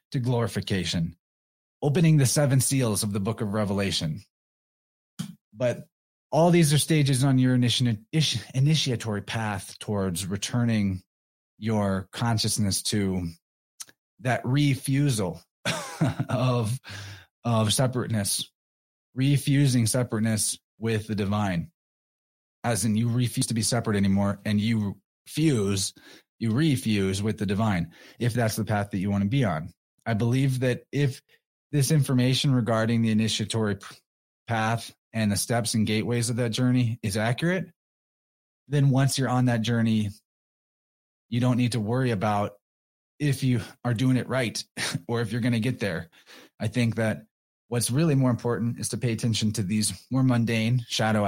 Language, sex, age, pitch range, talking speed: English, male, 30-49, 105-130 Hz, 145 wpm